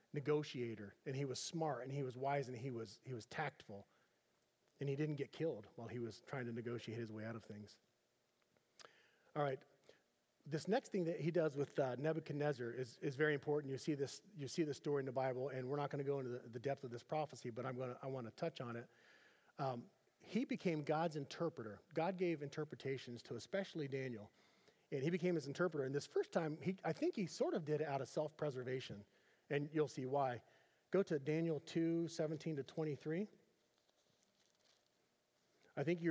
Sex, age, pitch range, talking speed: male, 40-59, 130-170 Hz, 205 wpm